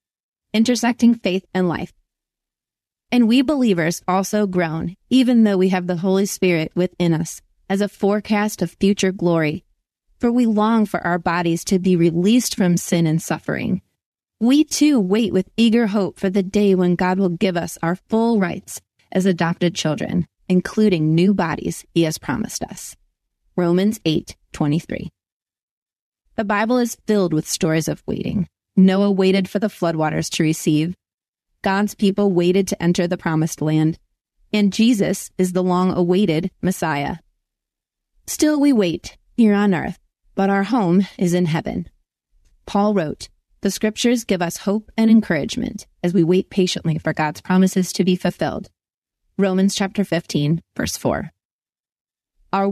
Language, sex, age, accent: English, female, 30-49, American